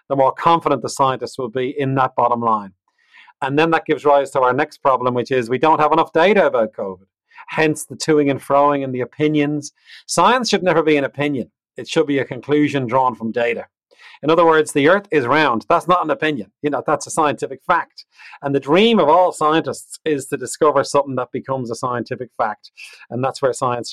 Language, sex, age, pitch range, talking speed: English, male, 40-59, 125-155 Hz, 220 wpm